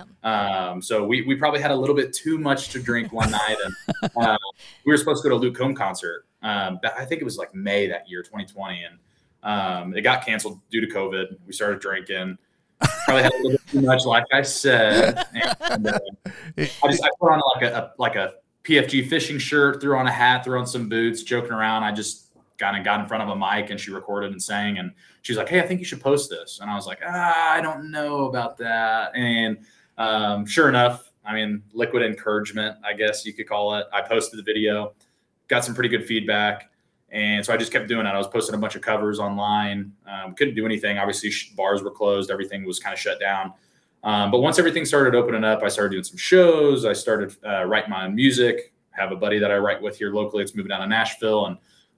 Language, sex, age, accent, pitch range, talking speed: English, male, 20-39, American, 100-125 Hz, 235 wpm